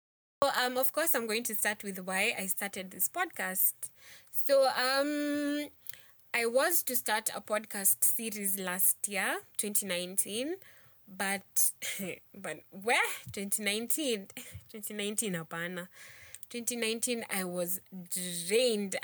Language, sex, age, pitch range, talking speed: English, female, 20-39, 190-235 Hz, 115 wpm